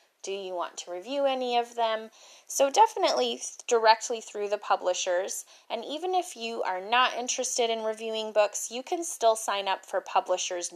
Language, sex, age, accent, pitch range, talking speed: English, female, 20-39, American, 190-245 Hz, 175 wpm